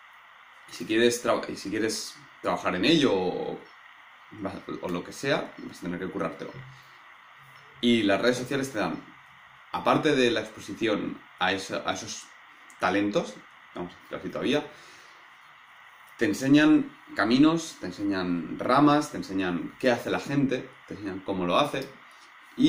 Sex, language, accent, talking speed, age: male, Spanish, Spanish, 140 wpm, 20-39